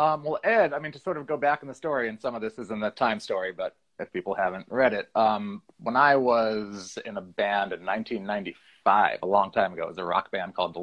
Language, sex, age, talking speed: English, male, 30-49, 265 wpm